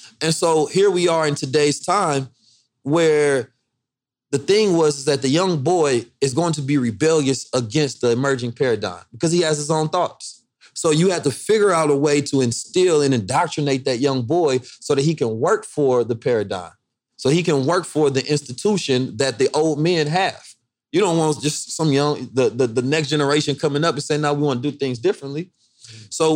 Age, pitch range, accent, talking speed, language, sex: 30-49, 135-165 Hz, American, 205 wpm, English, male